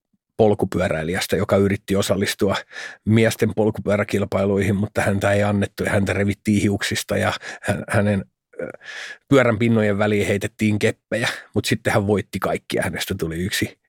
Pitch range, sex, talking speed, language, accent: 110-145 Hz, male, 125 wpm, Finnish, native